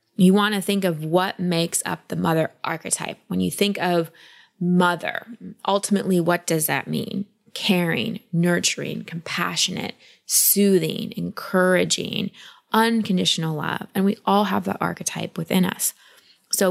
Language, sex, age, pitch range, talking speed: English, female, 20-39, 170-205 Hz, 135 wpm